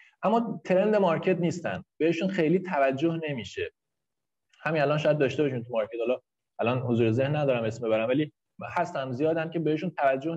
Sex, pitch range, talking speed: male, 130-165 Hz, 160 wpm